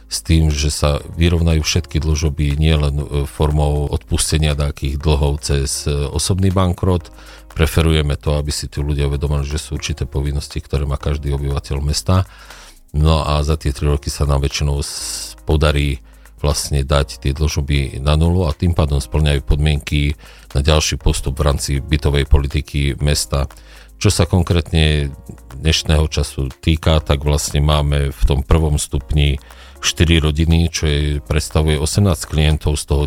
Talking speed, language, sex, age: 145 wpm, Slovak, male, 40-59